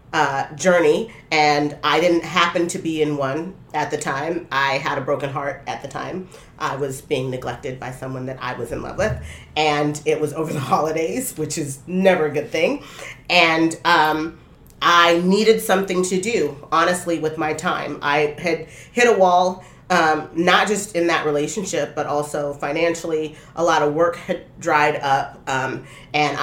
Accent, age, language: American, 30-49, English